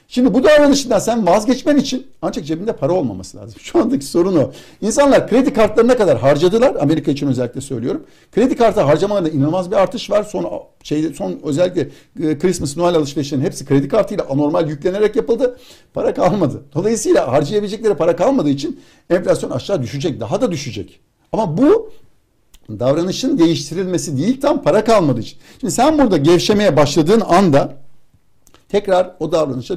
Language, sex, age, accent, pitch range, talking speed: Turkish, male, 60-79, native, 145-215 Hz, 150 wpm